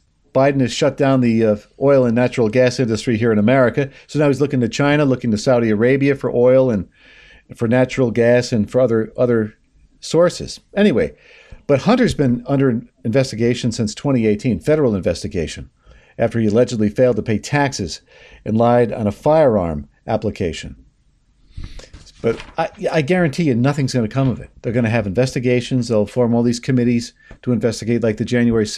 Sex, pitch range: male, 110-135 Hz